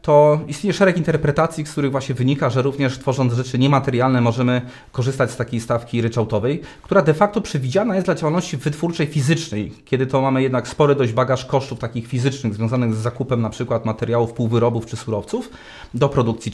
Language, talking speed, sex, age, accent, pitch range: Polish, 180 wpm, male, 30-49, native, 125-155 Hz